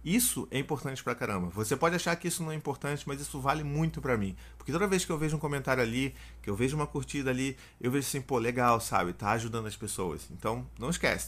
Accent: Brazilian